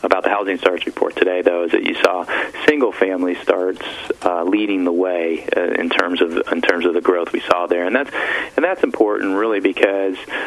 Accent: American